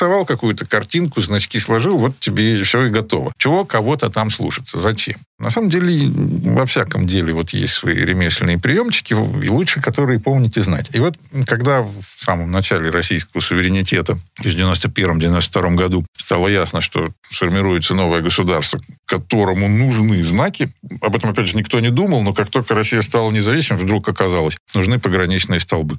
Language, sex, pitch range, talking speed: Russian, male, 90-120 Hz, 155 wpm